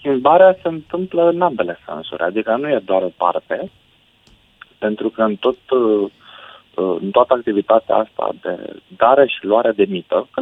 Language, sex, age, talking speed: Romanian, male, 40-59, 155 wpm